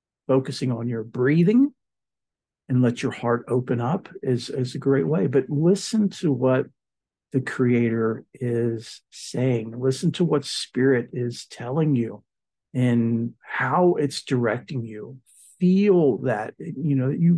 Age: 50-69